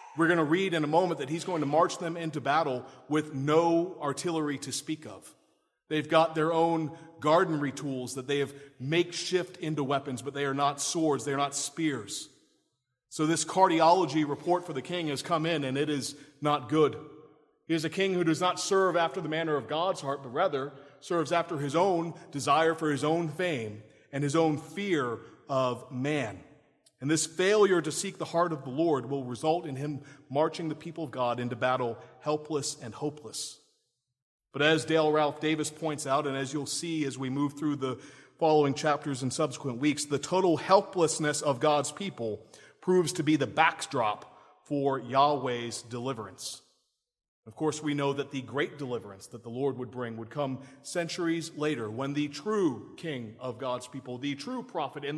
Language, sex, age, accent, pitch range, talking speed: English, male, 40-59, American, 135-165 Hz, 190 wpm